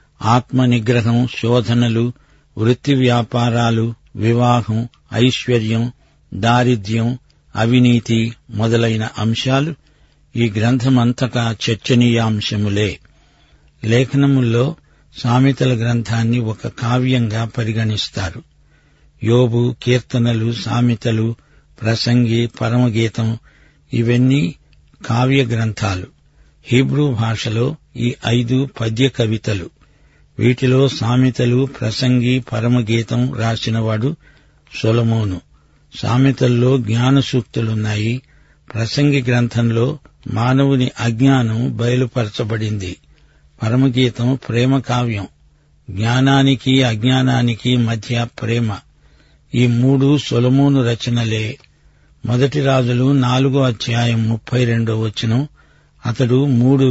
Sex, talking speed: male, 70 wpm